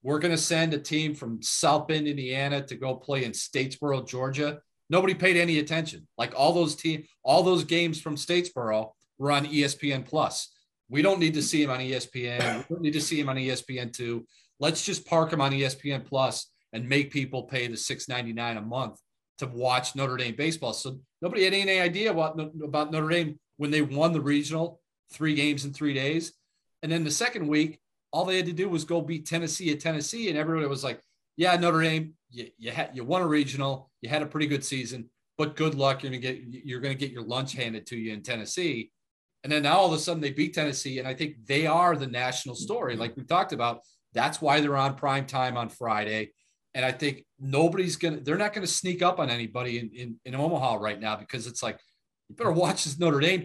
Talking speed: 225 wpm